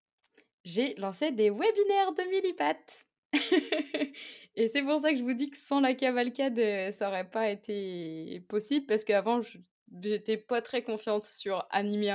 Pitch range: 180-225 Hz